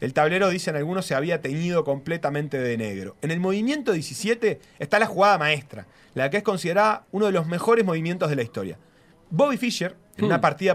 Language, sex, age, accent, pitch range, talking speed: Spanish, male, 30-49, Argentinian, 145-205 Hz, 195 wpm